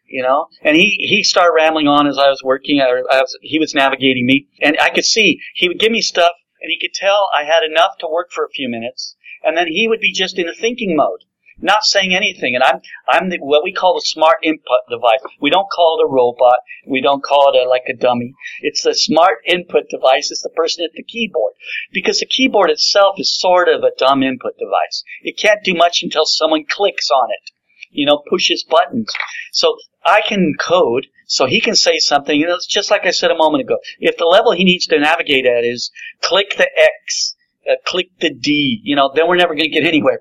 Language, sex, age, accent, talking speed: English, male, 50-69, American, 230 wpm